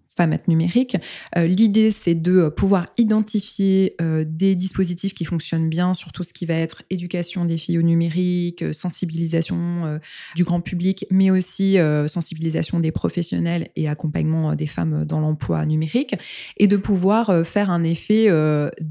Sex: female